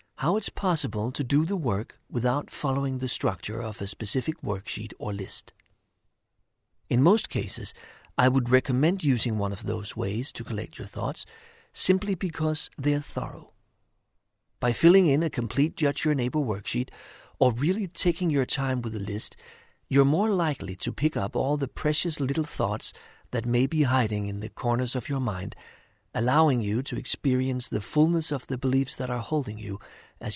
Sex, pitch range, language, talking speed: male, 110-150 Hz, English, 175 wpm